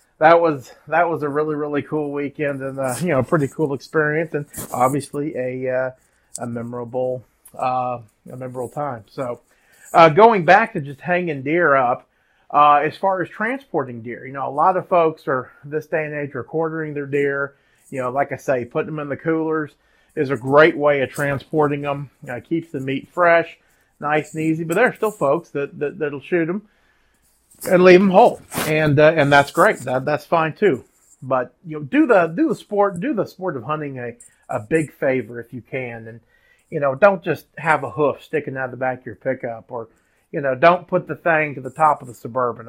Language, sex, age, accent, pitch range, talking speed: English, male, 30-49, American, 130-160 Hz, 220 wpm